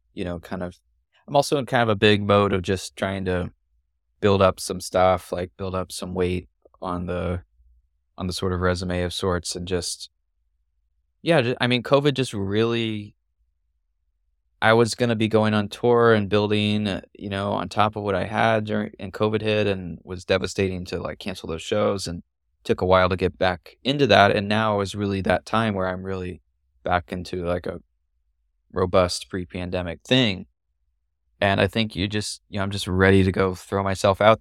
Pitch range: 90-105 Hz